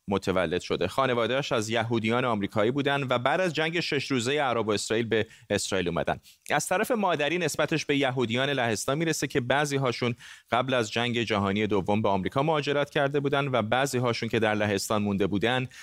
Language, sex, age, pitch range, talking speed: Persian, male, 30-49, 110-140 Hz, 175 wpm